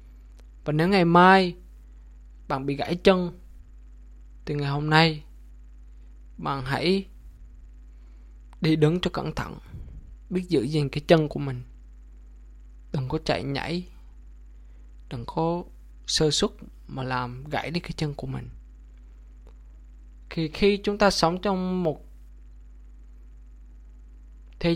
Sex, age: male, 20-39